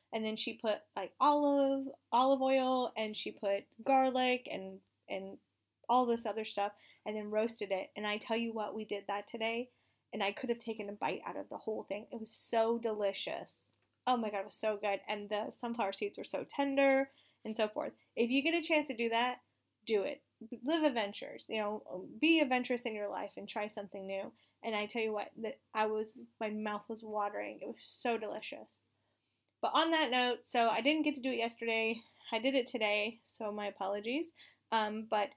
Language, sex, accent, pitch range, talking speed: English, female, American, 210-260 Hz, 210 wpm